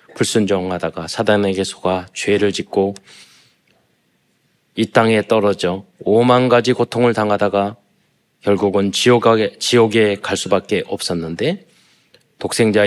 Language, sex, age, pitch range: Korean, male, 20-39, 95-115 Hz